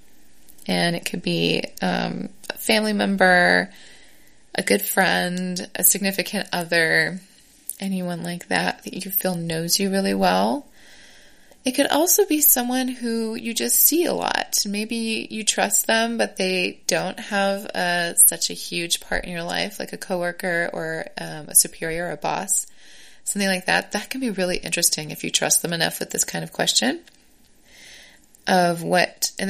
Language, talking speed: English, 165 wpm